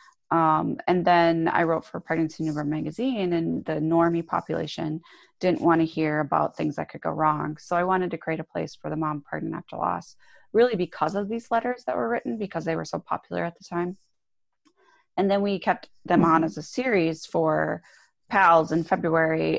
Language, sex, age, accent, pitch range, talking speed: English, female, 30-49, American, 155-185 Hz, 200 wpm